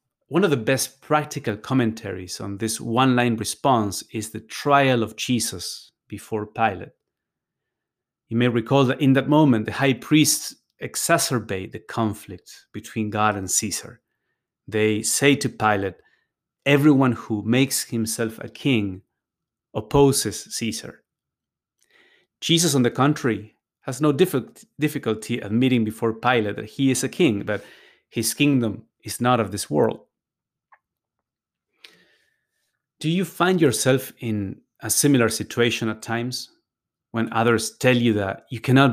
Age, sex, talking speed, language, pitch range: 30-49, male, 135 wpm, English, 110-130 Hz